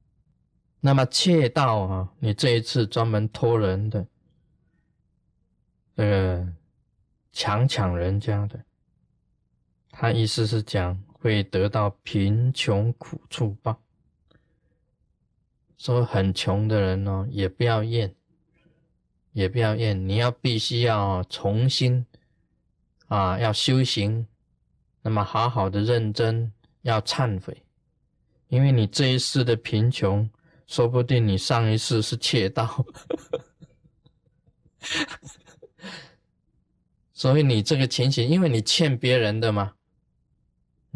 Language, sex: Chinese, male